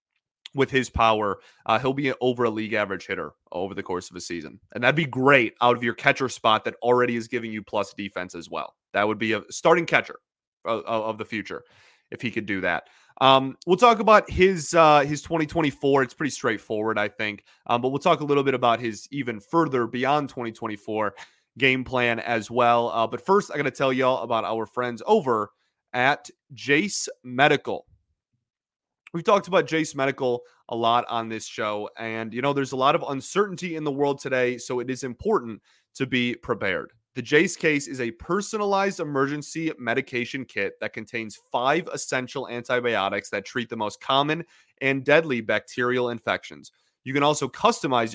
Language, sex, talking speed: English, male, 185 wpm